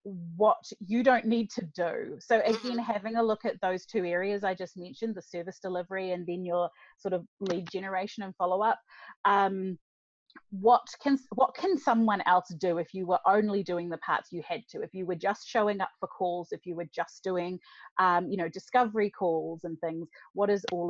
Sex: female